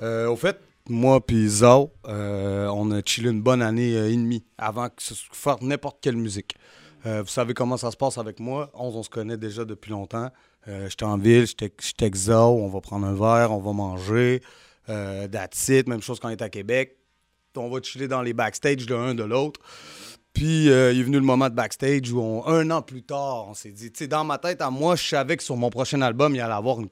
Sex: male